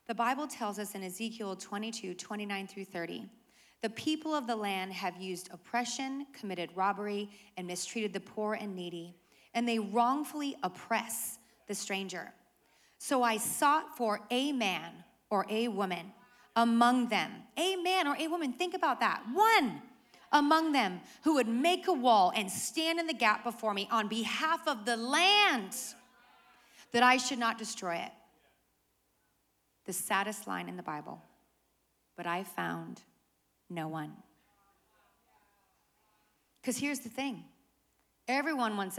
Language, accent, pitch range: English, American, 205-315 Hz